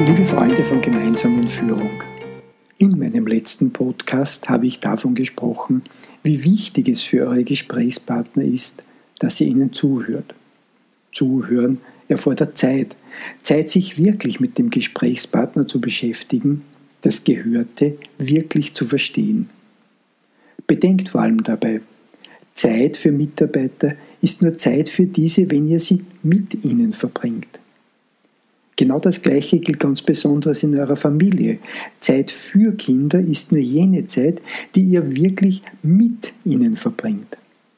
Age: 50-69